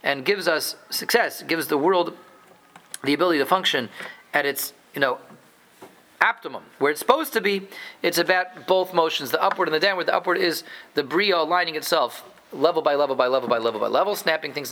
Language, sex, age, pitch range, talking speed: English, male, 40-59, 145-195 Hz, 195 wpm